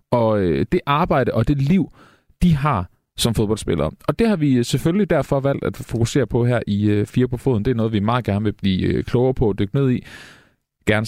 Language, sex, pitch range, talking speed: Danish, male, 105-145 Hz, 215 wpm